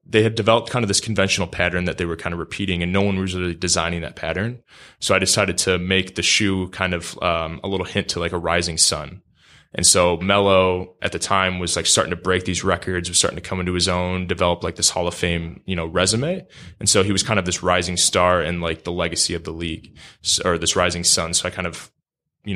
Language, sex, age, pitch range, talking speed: English, male, 20-39, 85-95 Hz, 250 wpm